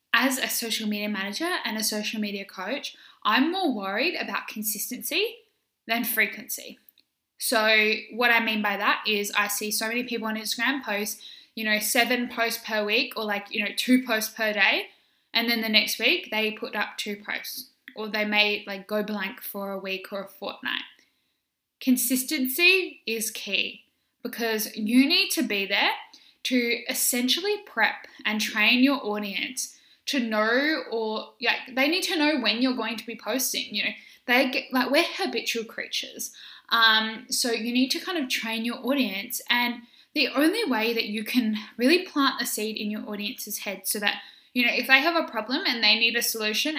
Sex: female